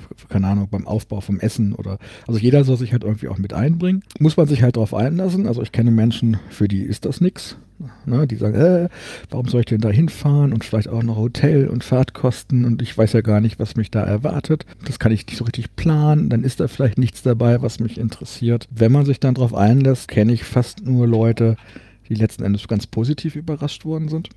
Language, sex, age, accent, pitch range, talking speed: German, male, 50-69, German, 105-130 Hz, 230 wpm